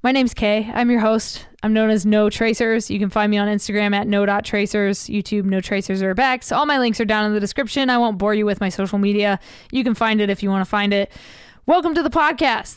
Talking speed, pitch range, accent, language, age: 250 wpm, 215-260 Hz, American, English, 20-39